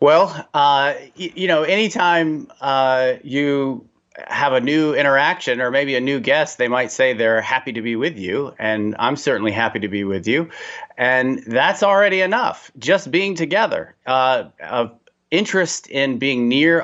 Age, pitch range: 30-49, 120-165 Hz